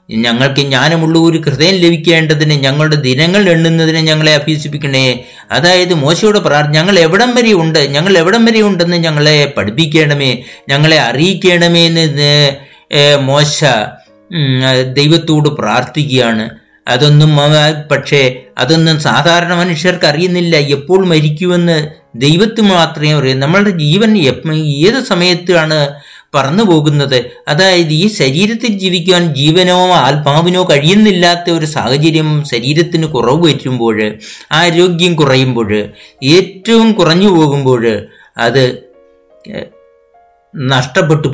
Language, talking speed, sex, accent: Malayalam, 50 wpm, male, native